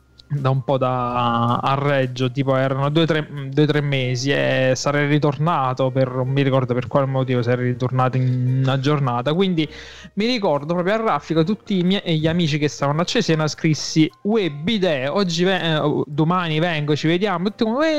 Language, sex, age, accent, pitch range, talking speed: Italian, male, 20-39, native, 150-210 Hz, 175 wpm